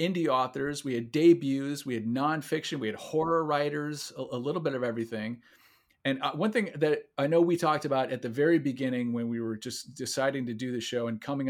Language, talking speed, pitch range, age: English, 215 wpm, 125-150 Hz, 40-59